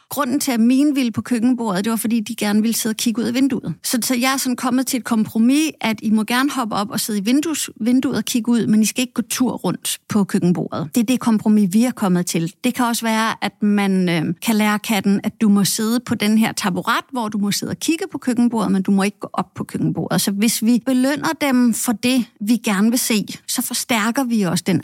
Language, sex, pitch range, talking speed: Danish, female, 200-240 Hz, 265 wpm